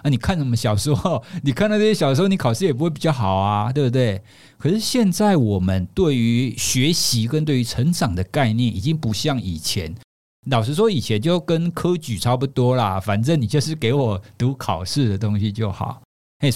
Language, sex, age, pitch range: Chinese, male, 50-69, 105-160 Hz